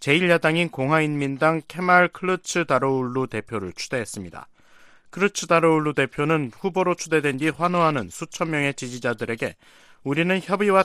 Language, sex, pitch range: Korean, male, 125-170 Hz